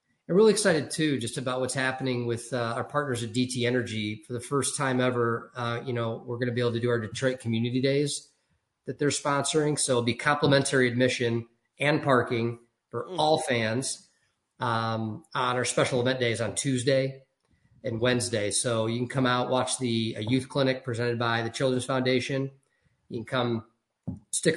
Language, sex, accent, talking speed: English, male, American, 185 wpm